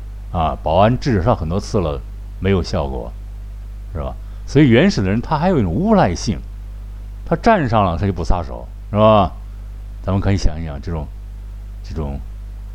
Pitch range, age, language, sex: 95-110 Hz, 50-69, Chinese, male